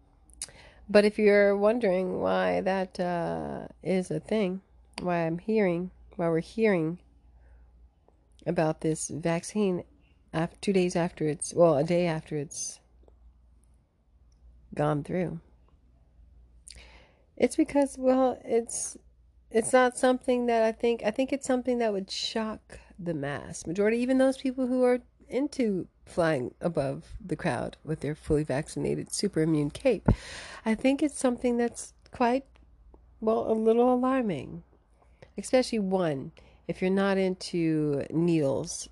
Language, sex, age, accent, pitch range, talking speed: English, female, 40-59, American, 135-215 Hz, 130 wpm